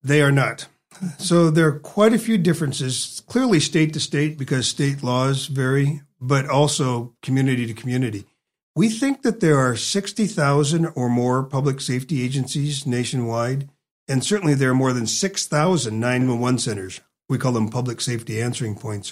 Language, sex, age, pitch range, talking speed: English, male, 50-69, 120-155 Hz, 160 wpm